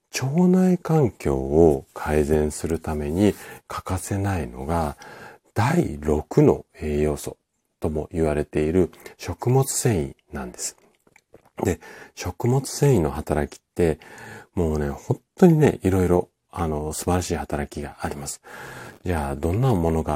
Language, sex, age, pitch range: Japanese, male, 40-59, 75-115 Hz